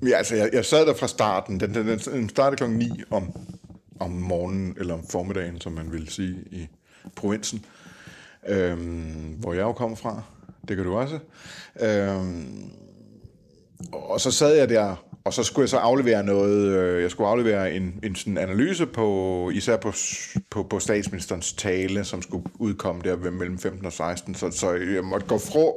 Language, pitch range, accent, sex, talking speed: Danish, 90-110 Hz, native, male, 180 wpm